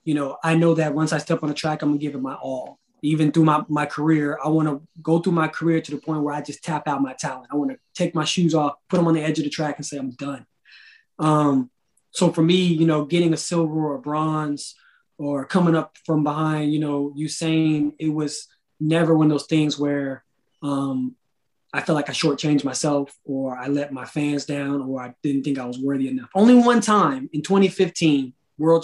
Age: 20-39